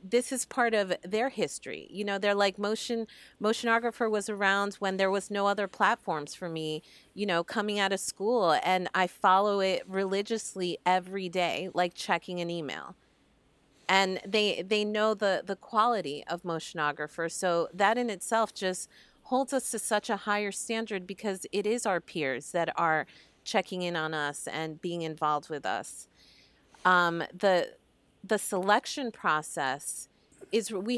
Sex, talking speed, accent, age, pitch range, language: female, 160 wpm, American, 30-49, 175-215 Hz, English